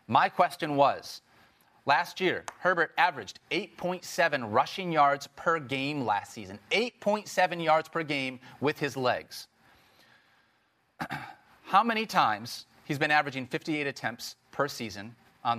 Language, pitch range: English, 135-175 Hz